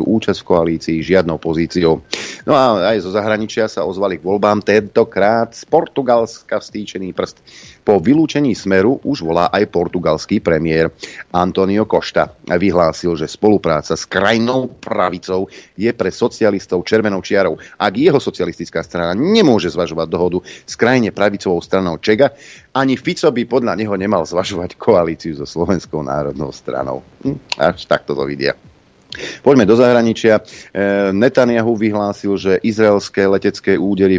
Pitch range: 90-110 Hz